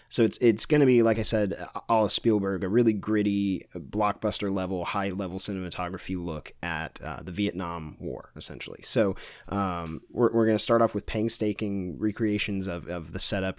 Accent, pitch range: American, 90-105 Hz